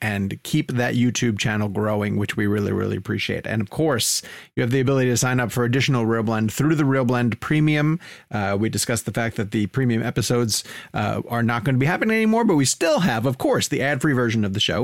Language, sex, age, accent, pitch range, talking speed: English, male, 30-49, American, 110-140 Hz, 240 wpm